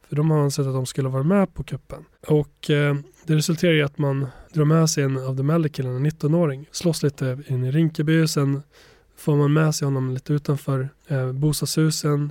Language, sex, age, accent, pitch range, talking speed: Swedish, male, 20-39, native, 135-155 Hz, 205 wpm